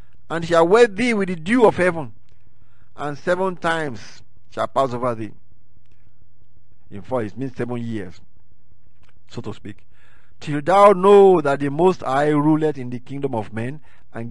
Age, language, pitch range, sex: 50-69, English, 120-180 Hz, male